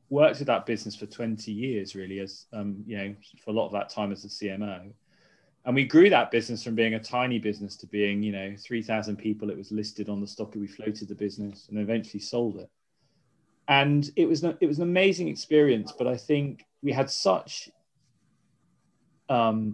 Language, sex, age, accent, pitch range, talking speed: English, male, 20-39, British, 100-135 Hz, 210 wpm